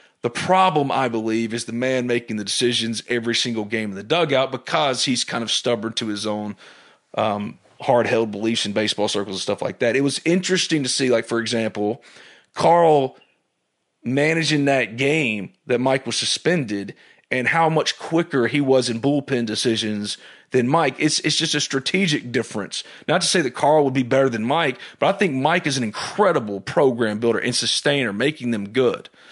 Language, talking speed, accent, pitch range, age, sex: English, 185 wpm, American, 120-170 Hz, 30-49, male